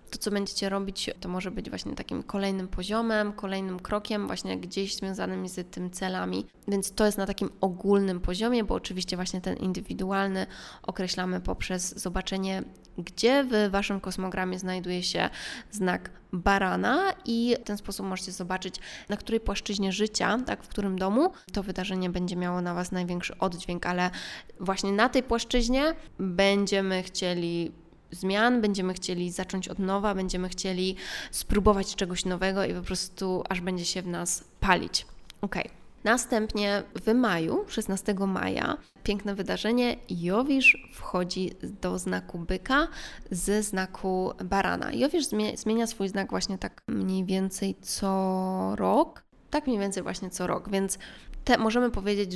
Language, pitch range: Polish, 185-210 Hz